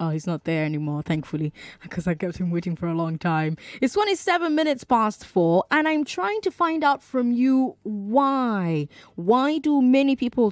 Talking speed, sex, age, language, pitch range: 190 wpm, female, 20-39, English, 180-275 Hz